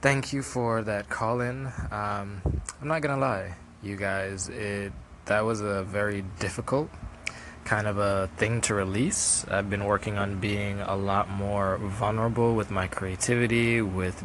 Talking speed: 160 wpm